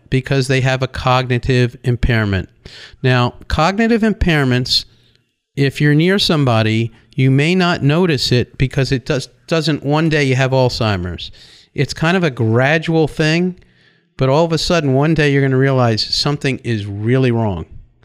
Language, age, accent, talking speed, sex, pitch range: English, 50-69, American, 155 wpm, male, 120-150 Hz